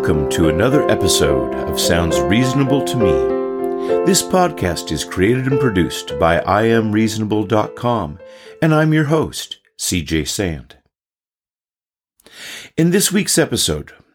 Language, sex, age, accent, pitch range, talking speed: English, male, 50-69, American, 85-120 Hz, 115 wpm